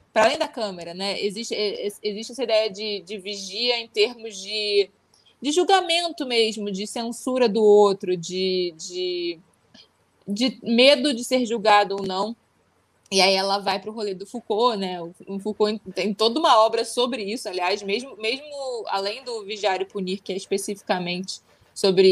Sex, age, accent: female, 20-39, Brazilian